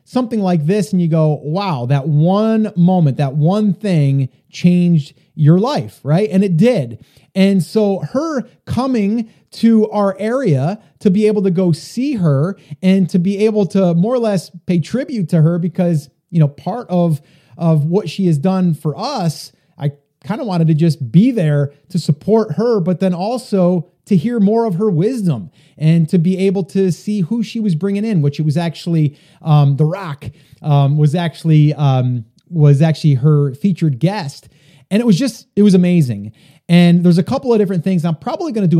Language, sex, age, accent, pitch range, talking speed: English, male, 30-49, American, 150-195 Hz, 190 wpm